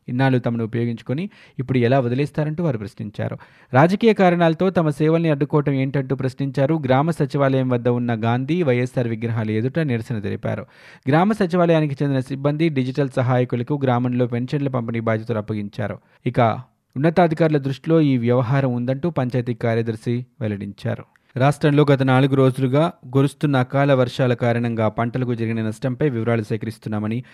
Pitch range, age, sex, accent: 115-145 Hz, 20-39, male, native